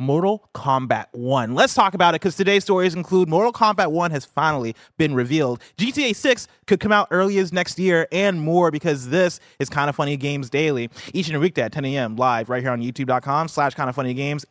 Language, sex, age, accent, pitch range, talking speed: English, male, 20-39, American, 120-170 Hz, 205 wpm